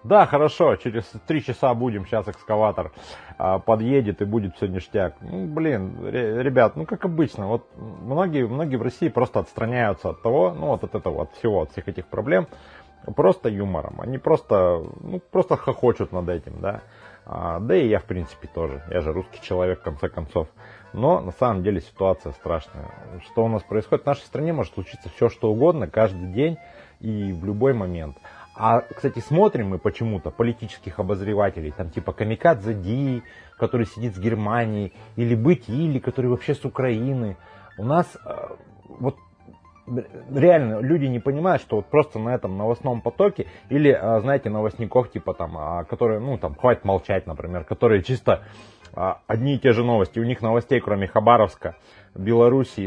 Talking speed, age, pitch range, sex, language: 165 wpm, 30-49, 95-130 Hz, male, Russian